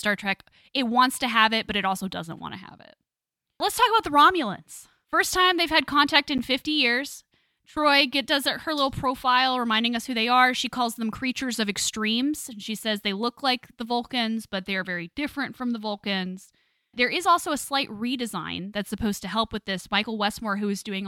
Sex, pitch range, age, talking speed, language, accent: female, 195-260 Hz, 10-29, 220 wpm, English, American